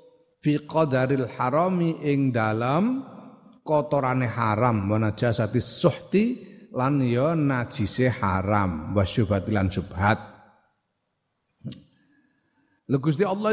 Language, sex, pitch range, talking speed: Indonesian, male, 120-165 Hz, 70 wpm